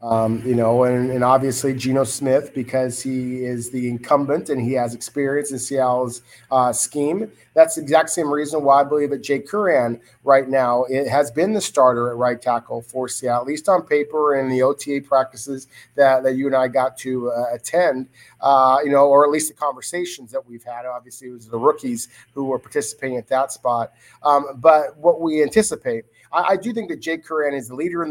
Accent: American